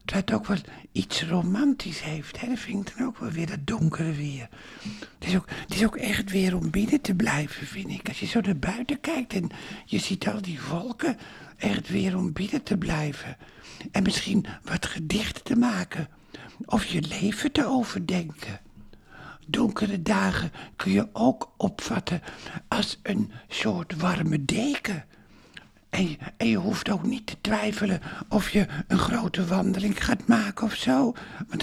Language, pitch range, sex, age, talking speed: Dutch, 175-225 Hz, male, 60-79, 165 wpm